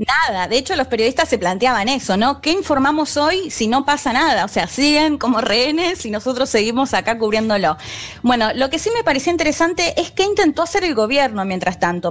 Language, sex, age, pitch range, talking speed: Spanish, female, 20-39, 200-280 Hz, 205 wpm